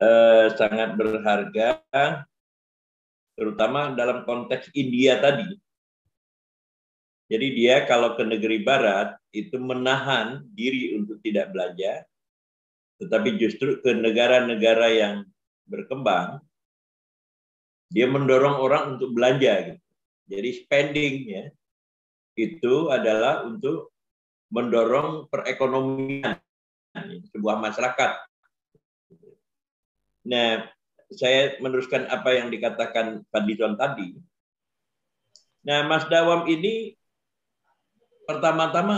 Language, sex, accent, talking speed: Indonesian, male, native, 80 wpm